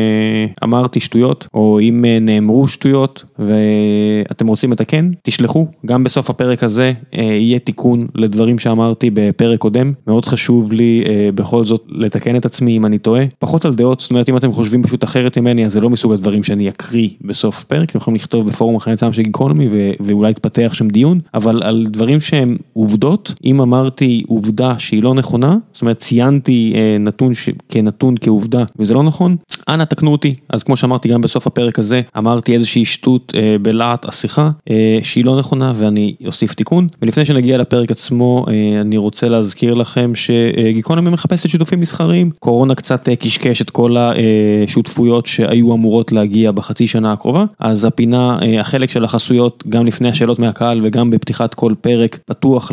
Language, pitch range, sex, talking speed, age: Hebrew, 110-130 Hz, male, 170 wpm, 20-39